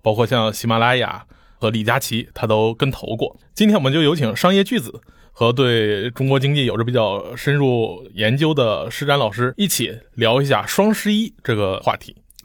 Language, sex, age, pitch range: Chinese, male, 20-39, 110-160 Hz